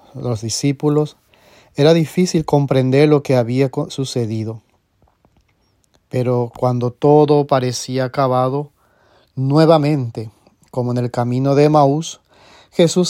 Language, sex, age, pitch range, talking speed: English, male, 30-49, 120-145 Hz, 100 wpm